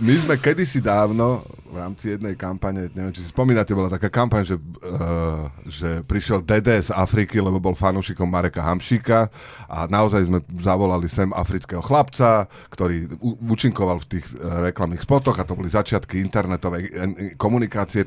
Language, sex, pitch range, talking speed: Slovak, male, 95-125 Hz, 155 wpm